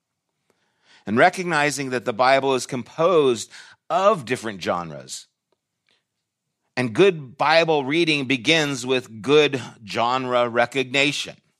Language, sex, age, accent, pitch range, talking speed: English, male, 50-69, American, 115-140 Hz, 100 wpm